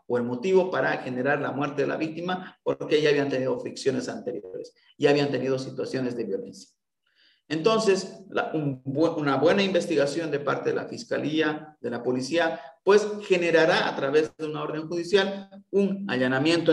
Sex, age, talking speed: male, 50-69, 165 wpm